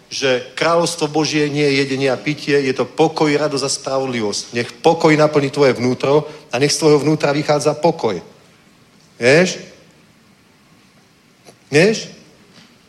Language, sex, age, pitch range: Czech, male, 40-59, 135-170 Hz